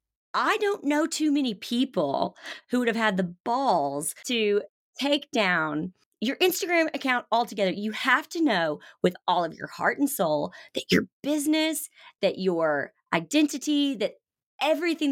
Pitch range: 180-255 Hz